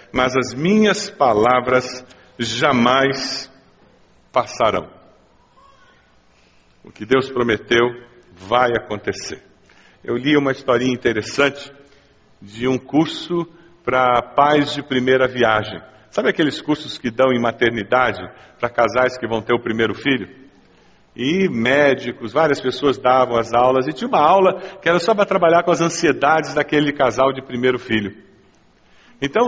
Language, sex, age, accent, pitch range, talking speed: Portuguese, male, 50-69, Brazilian, 135-200 Hz, 130 wpm